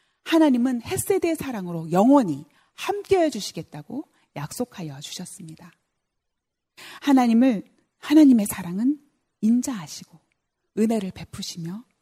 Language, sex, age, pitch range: Korean, female, 40-59, 175-290 Hz